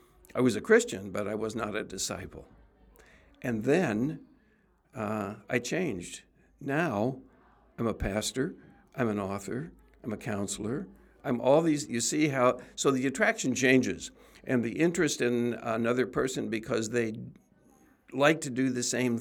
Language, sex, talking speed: English, male, 150 wpm